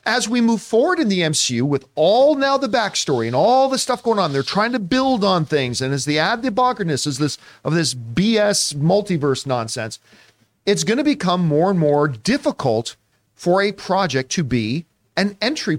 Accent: American